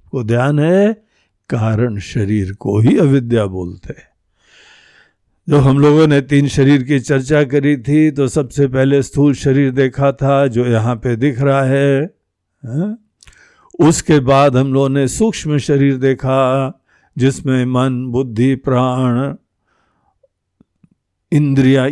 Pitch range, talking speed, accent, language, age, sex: 125-155 Hz, 125 wpm, native, Hindi, 60-79, male